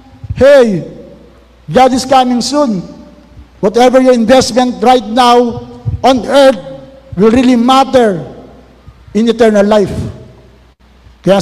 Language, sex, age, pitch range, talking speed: Filipino, male, 50-69, 185-225 Hz, 100 wpm